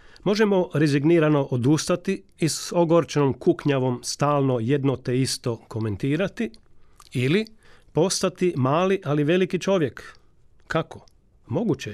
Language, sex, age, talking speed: Croatian, male, 40-59, 100 wpm